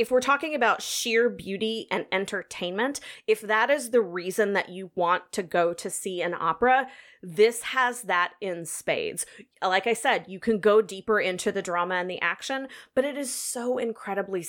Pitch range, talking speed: 180-245 Hz, 185 wpm